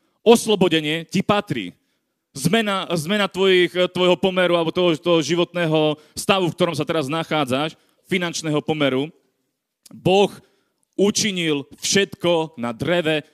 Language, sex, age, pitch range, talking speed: Slovak, male, 40-59, 155-195 Hz, 110 wpm